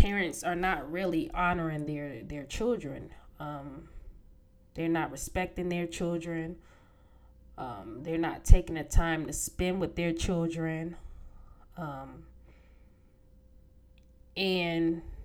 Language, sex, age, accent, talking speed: English, female, 20-39, American, 105 wpm